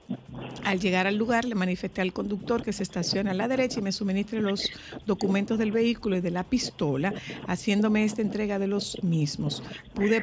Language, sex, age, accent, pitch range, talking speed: Spanish, female, 50-69, American, 180-215 Hz, 190 wpm